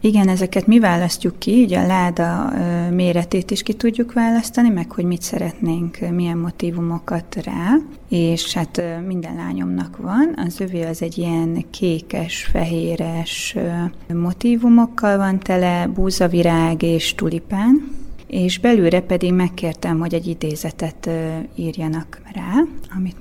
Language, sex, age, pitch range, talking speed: Hungarian, female, 30-49, 165-205 Hz, 125 wpm